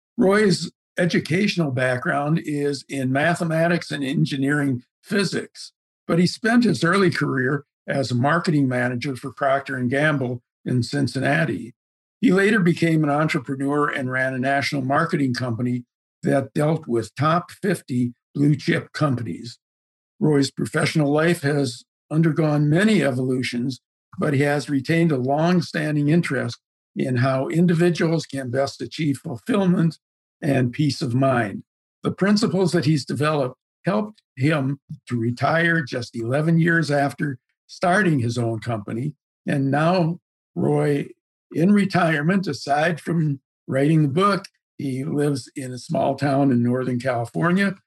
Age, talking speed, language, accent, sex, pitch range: 60-79, 130 wpm, English, American, male, 130-170 Hz